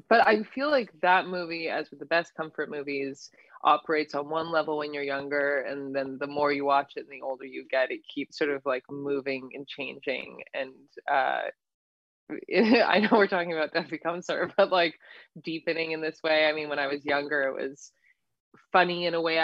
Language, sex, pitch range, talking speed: English, female, 145-180 Hz, 210 wpm